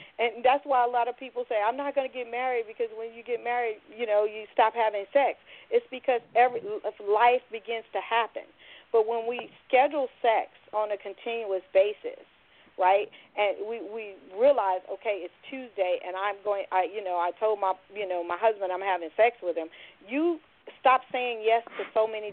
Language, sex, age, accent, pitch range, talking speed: English, female, 40-59, American, 190-245 Hz, 195 wpm